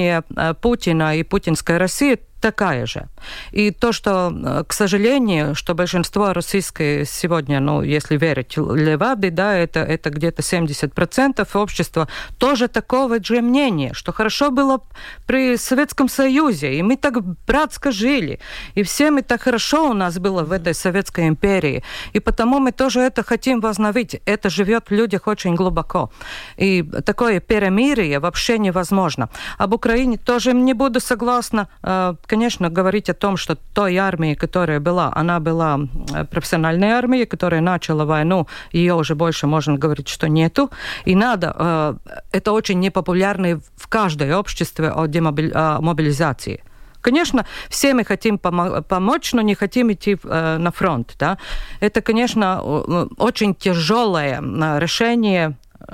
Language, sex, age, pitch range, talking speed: Russian, female, 50-69, 165-230 Hz, 140 wpm